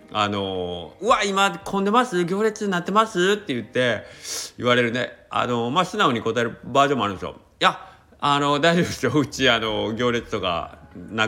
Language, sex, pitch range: Japanese, male, 100-150 Hz